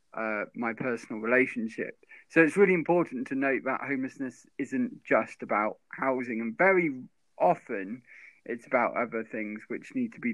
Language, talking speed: English, 155 wpm